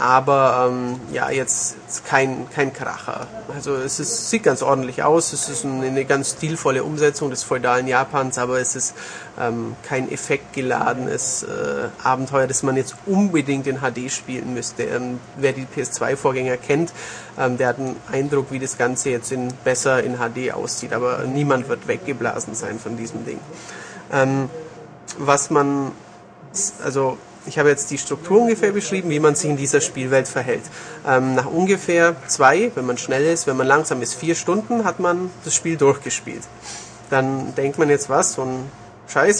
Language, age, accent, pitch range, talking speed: German, 30-49, German, 130-155 Hz, 170 wpm